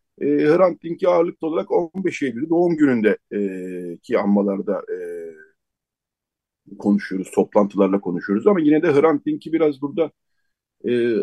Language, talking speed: Turkish, 125 wpm